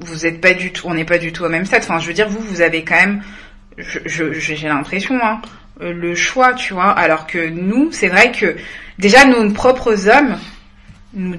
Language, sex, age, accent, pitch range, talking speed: French, female, 20-39, French, 170-225 Hz, 205 wpm